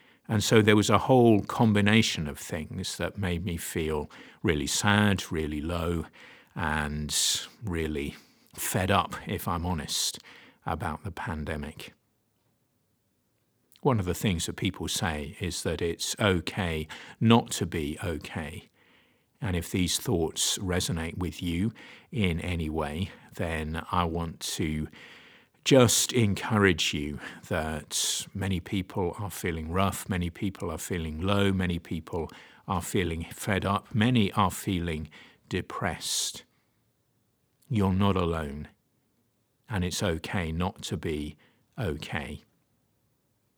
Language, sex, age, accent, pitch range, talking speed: English, male, 50-69, British, 80-105 Hz, 125 wpm